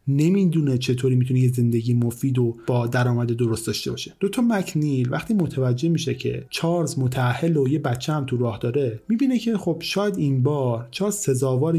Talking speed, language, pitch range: 180 wpm, Persian, 120-160 Hz